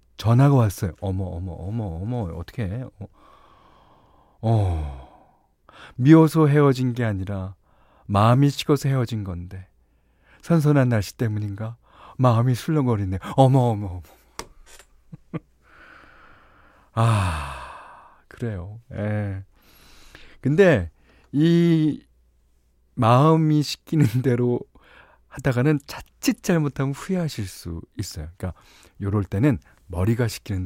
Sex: male